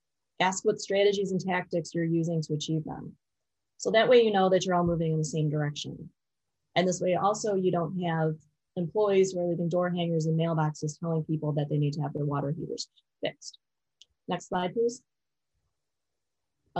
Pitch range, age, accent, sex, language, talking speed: 155-195 Hz, 30-49, American, female, English, 185 wpm